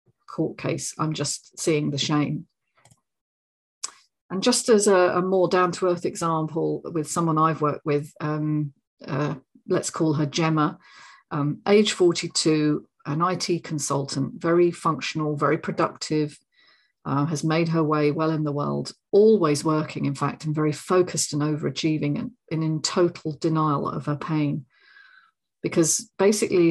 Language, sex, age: English, female, 40-59